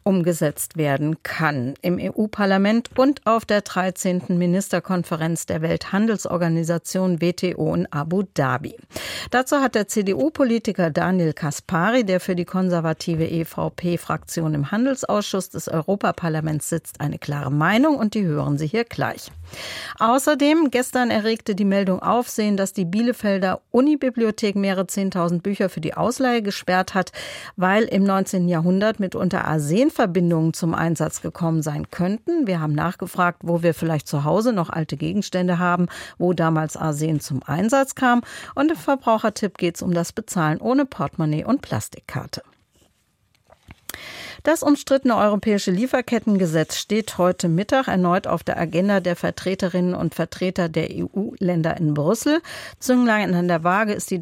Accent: German